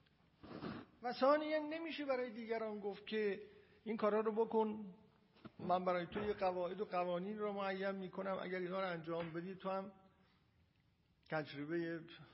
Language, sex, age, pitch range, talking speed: Persian, male, 50-69, 140-205 Hz, 135 wpm